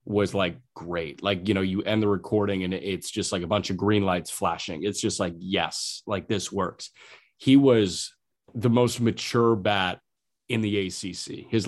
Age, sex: 30-49, male